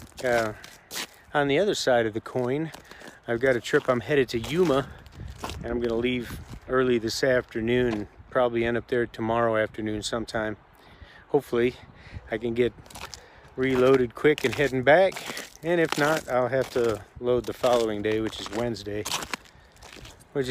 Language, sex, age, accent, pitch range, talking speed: English, male, 40-59, American, 110-130 Hz, 160 wpm